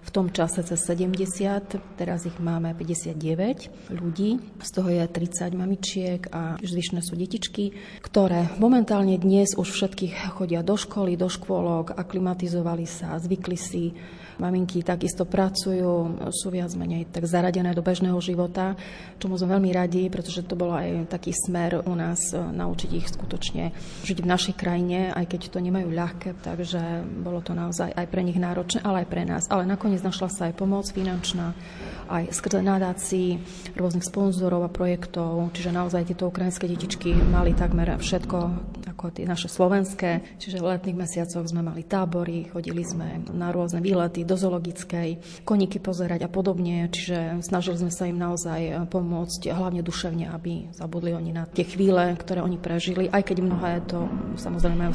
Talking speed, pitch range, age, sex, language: 160 wpm, 175-185 Hz, 30-49, female, Slovak